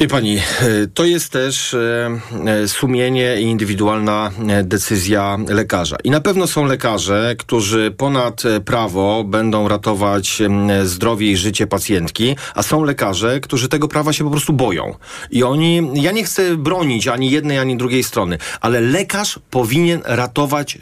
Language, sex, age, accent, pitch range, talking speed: Polish, male, 40-59, native, 120-165 Hz, 140 wpm